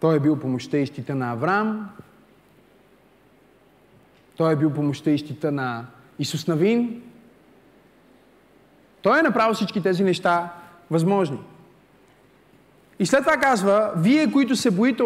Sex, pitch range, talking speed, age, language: male, 160-240 Hz, 130 wpm, 30-49, Bulgarian